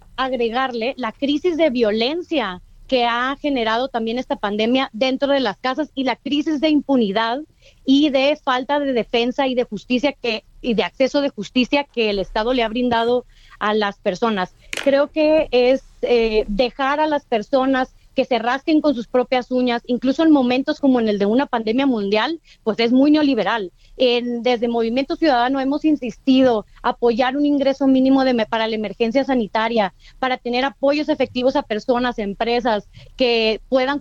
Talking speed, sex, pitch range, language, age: 170 wpm, female, 235-280 Hz, Spanish, 30-49